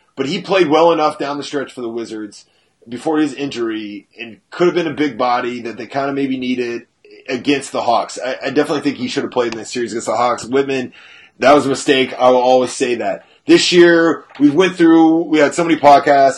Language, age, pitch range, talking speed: English, 30-49, 125-160 Hz, 235 wpm